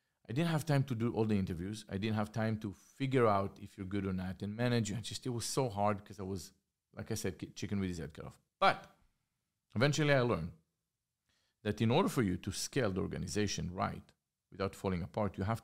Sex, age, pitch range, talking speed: male, 40-59, 95-115 Hz, 225 wpm